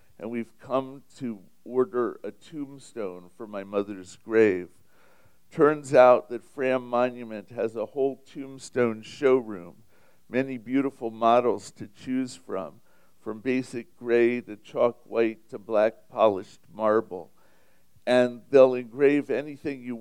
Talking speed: 125 wpm